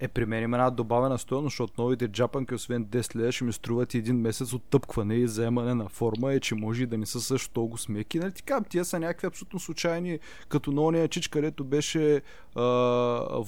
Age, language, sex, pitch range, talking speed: 20-39, Bulgarian, male, 115-155 Hz, 205 wpm